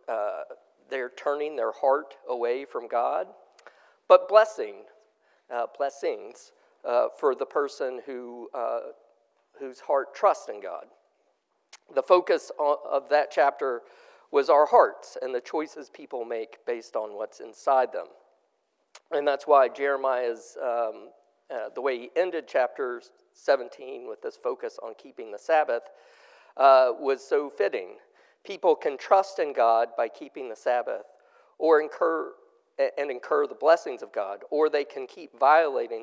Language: English